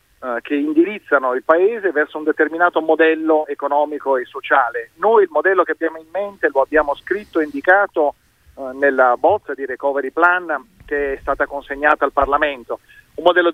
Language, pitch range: Italian, 145-190 Hz